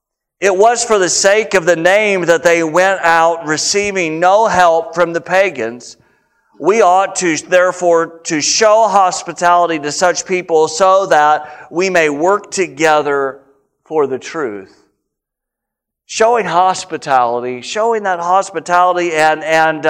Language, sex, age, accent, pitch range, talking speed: English, male, 50-69, American, 155-190 Hz, 135 wpm